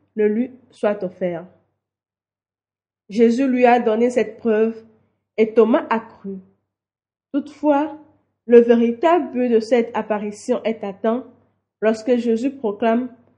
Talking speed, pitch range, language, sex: 115 wpm, 205-245 Hz, French, female